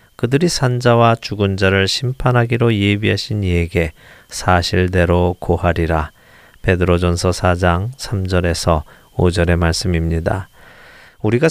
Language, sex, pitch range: Korean, male, 90-120 Hz